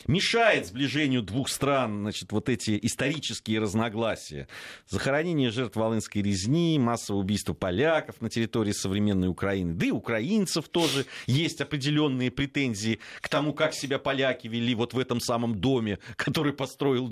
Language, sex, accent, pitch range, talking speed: Russian, male, native, 100-140 Hz, 140 wpm